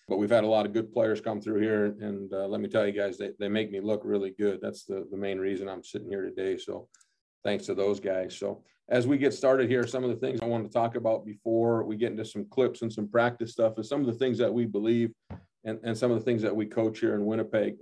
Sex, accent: male, American